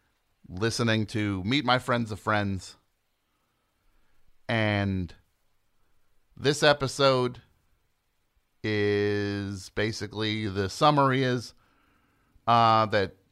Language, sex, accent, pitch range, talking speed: English, male, American, 105-150 Hz, 75 wpm